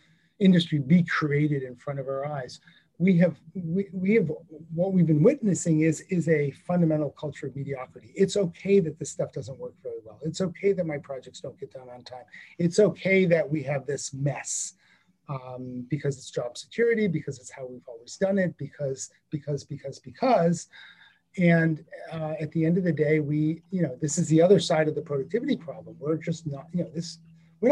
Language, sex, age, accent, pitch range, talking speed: English, male, 40-59, American, 145-190 Hz, 200 wpm